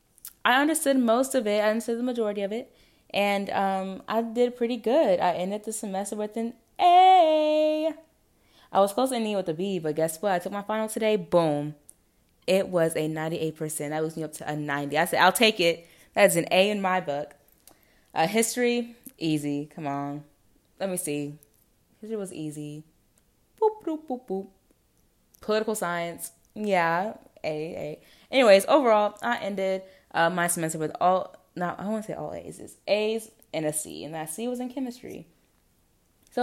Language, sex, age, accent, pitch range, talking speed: English, female, 20-39, American, 160-230 Hz, 180 wpm